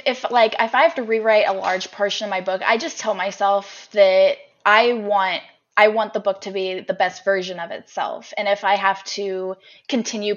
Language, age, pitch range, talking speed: English, 10-29, 190-230 Hz, 220 wpm